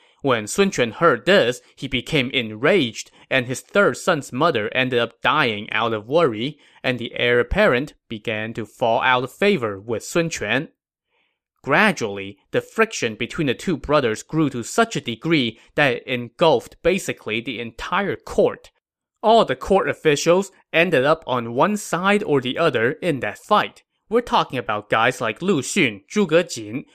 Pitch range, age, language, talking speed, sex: 120-195 Hz, 20-39, English, 165 wpm, male